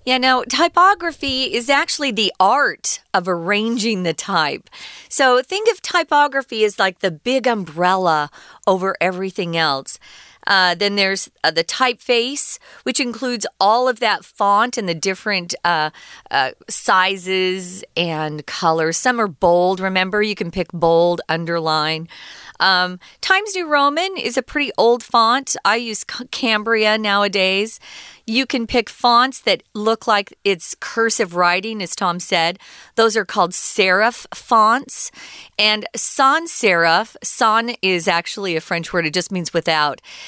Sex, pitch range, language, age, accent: female, 180-245 Hz, Chinese, 40-59, American